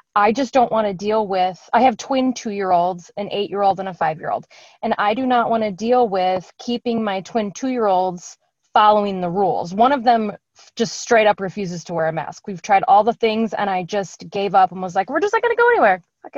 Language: English